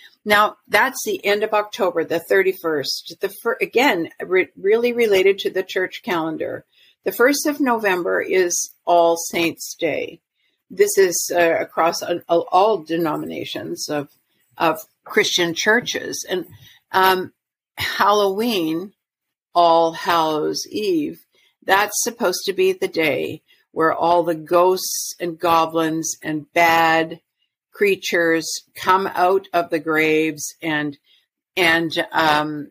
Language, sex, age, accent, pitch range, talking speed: English, female, 50-69, American, 165-210 Hz, 125 wpm